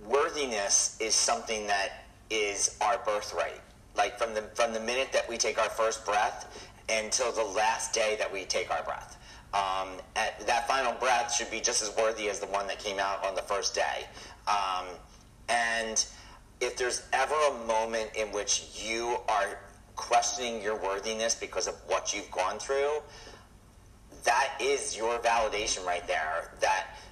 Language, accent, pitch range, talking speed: English, American, 110-135 Hz, 165 wpm